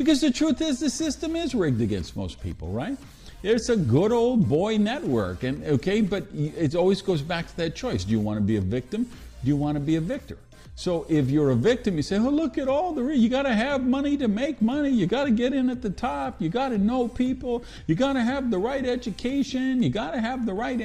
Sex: male